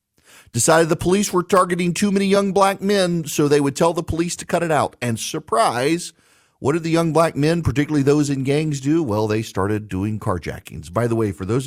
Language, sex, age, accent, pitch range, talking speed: English, male, 50-69, American, 100-140 Hz, 220 wpm